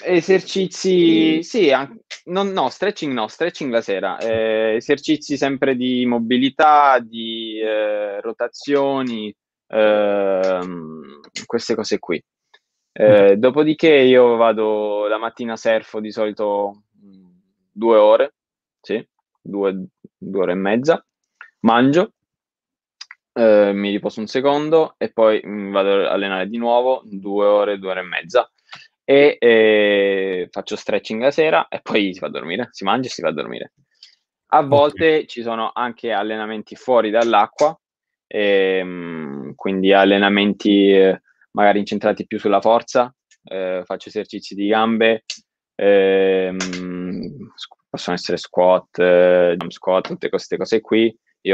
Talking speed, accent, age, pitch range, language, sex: 125 wpm, native, 20-39, 95-130 Hz, Italian, male